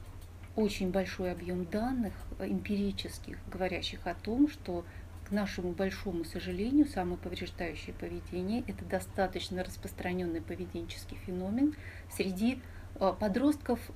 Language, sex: Russian, female